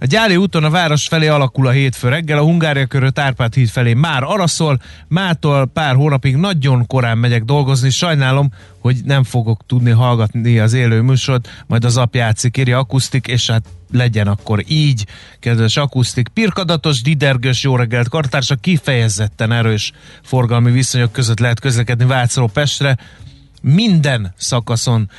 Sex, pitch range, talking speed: male, 120-140 Hz, 145 wpm